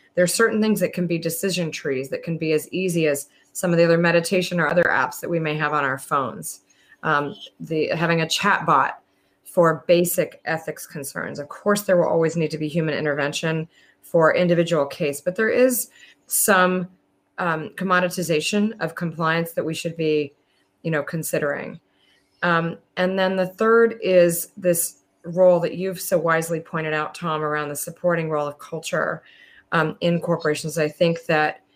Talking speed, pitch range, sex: 180 wpm, 155-175 Hz, female